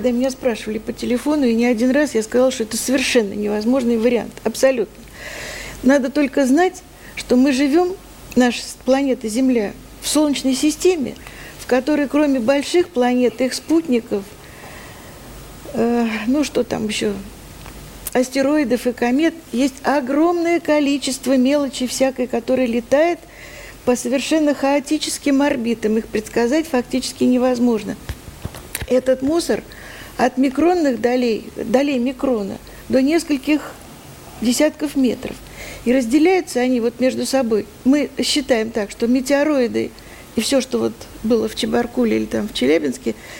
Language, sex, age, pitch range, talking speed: Russian, female, 50-69, 240-280 Hz, 125 wpm